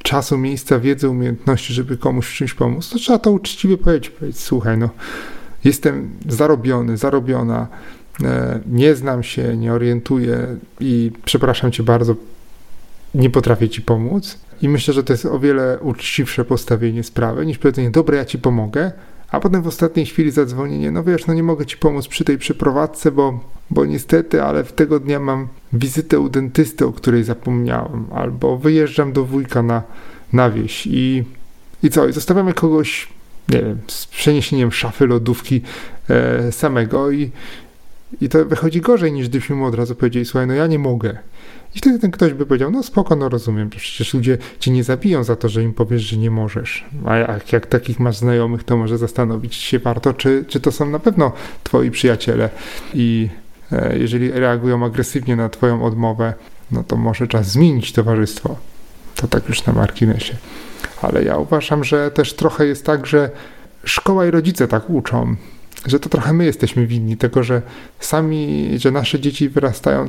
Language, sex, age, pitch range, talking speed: Polish, male, 30-49, 115-150 Hz, 175 wpm